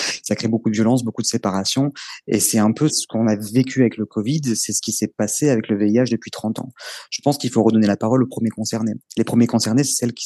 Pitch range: 105-125 Hz